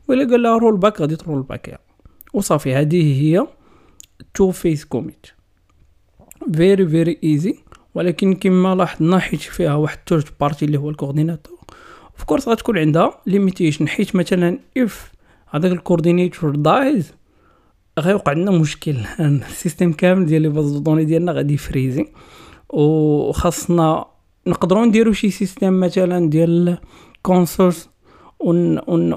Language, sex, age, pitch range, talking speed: Arabic, male, 40-59, 150-185 Hz, 105 wpm